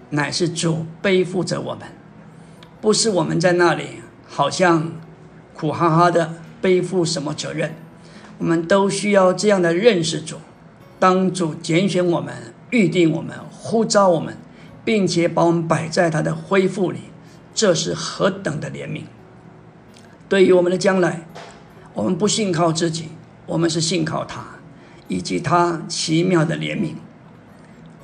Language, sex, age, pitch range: Chinese, male, 50-69, 165-185 Hz